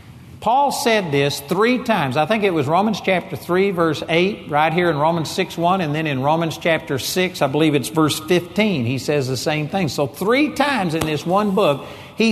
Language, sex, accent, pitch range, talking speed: English, male, American, 130-185 Hz, 215 wpm